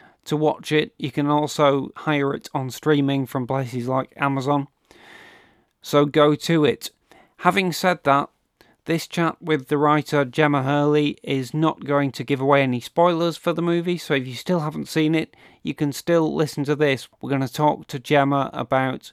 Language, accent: English, British